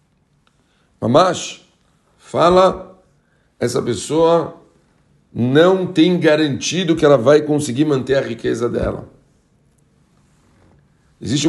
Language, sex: Portuguese, male